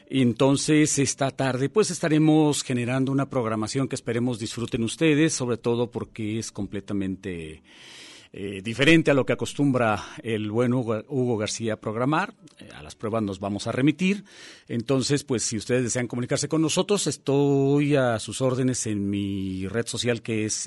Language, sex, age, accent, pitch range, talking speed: Spanish, male, 40-59, Mexican, 110-145 Hz, 160 wpm